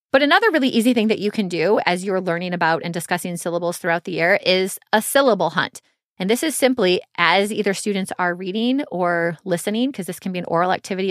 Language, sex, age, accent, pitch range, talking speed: English, female, 20-39, American, 170-215 Hz, 220 wpm